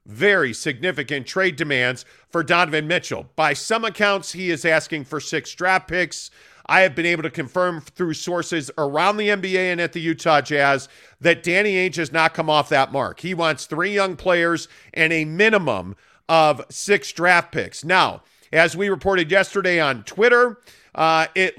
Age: 40-59